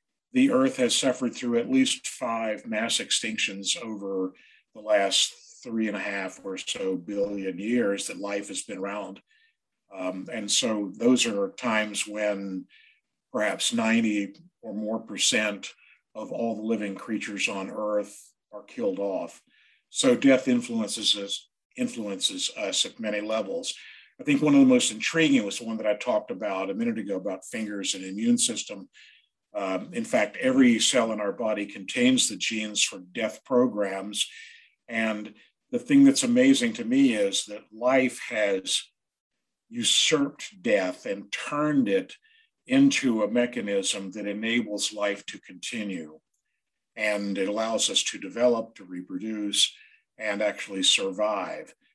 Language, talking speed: English, 145 wpm